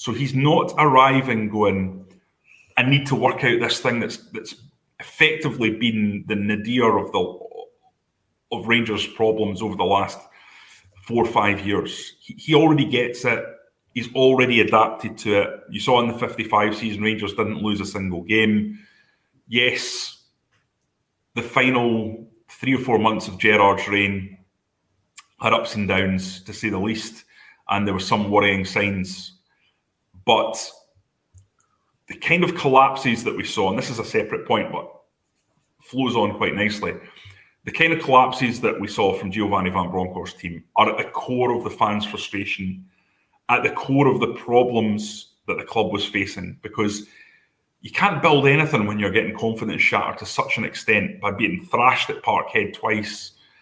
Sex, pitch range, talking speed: male, 100-125 Hz, 165 wpm